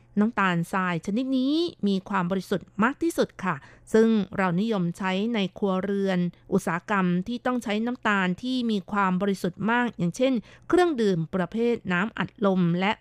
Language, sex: Thai, female